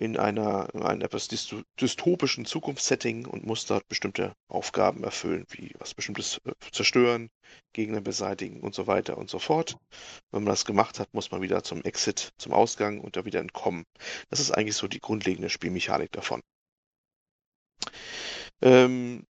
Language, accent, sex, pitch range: German, German, male, 105-125 Hz